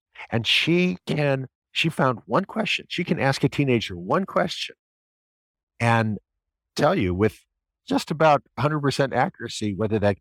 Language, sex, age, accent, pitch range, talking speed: English, male, 50-69, American, 100-130 Hz, 140 wpm